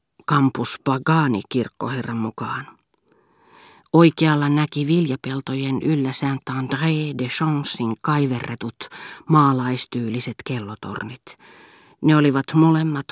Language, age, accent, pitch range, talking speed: Finnish, 40-59, native, 125-145 Hz, 80 wpm